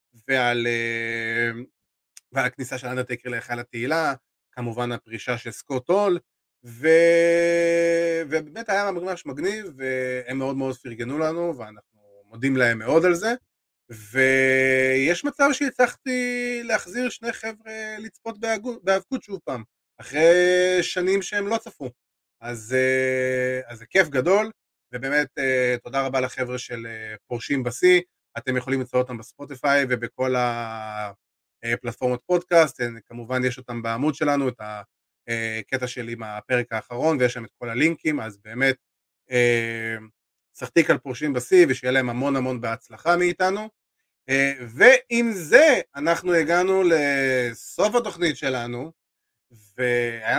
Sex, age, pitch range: male, 30-49, 120-170 Hz